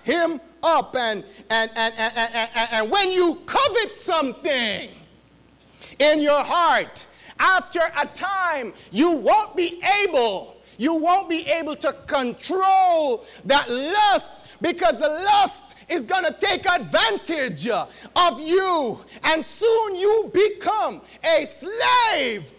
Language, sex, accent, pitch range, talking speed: English, male, American, 230-355 Hz, 125 wpm